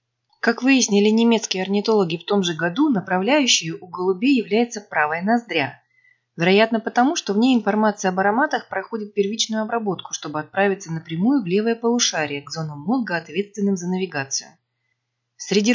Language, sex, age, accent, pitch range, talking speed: Russian, female, 20-39, native, 175-230 Hz, 145 wpm